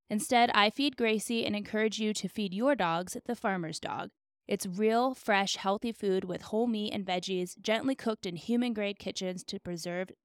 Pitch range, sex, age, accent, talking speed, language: 190-235 Hz, female, 20-39, American, 180 wpm, English